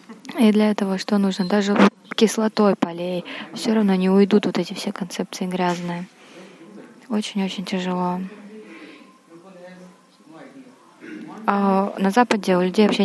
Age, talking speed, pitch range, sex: 20-39, 115 wpm, 190-220 Hz, female